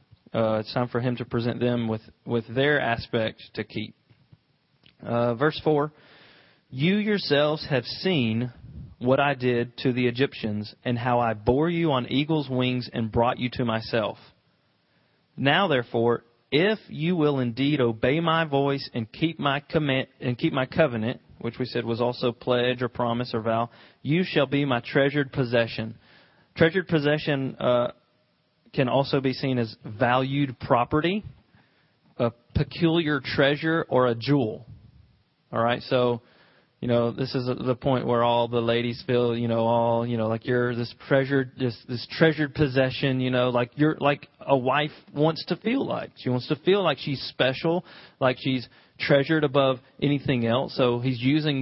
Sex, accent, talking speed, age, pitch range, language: male, American, 165 wpm, 30-49, 120-145 Hz, English